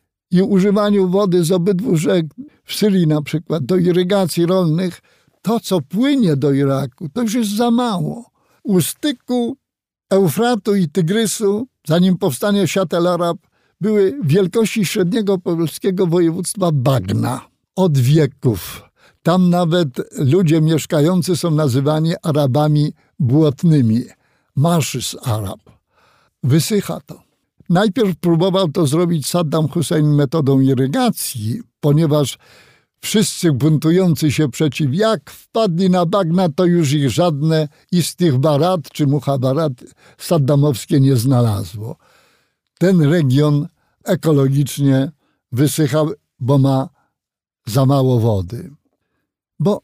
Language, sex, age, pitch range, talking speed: Polish, male, 60-79, 145-190 Hz, 110 wpm